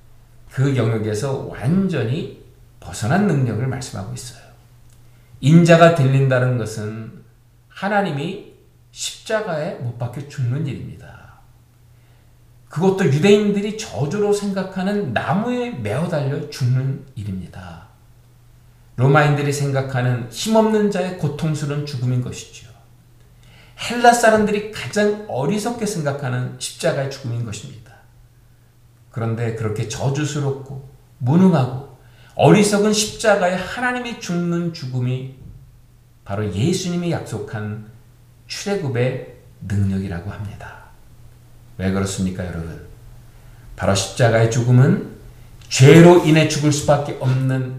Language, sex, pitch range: Korean, male, 120-155 Hz